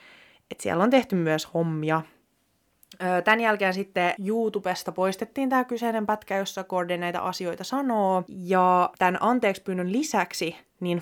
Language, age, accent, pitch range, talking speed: Finnish, 20-39, native, 175-210 Hz, 135 wpm